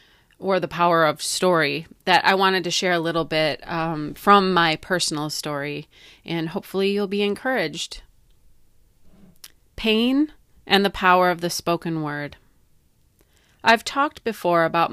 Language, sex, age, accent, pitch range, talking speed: English, female, 30-49, American, 165-205 Hz, 140 wpm